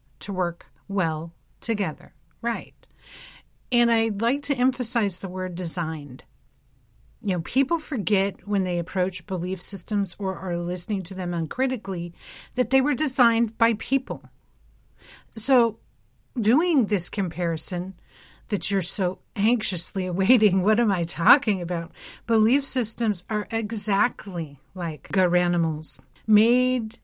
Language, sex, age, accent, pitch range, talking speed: English, female, 50-69, American, 170-225 Hz, 125 wpm